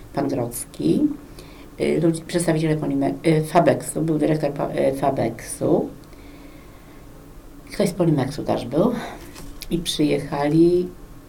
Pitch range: 145-170 Hz